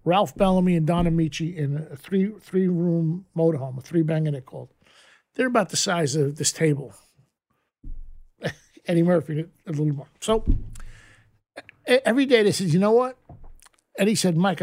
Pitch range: 155-190 Hz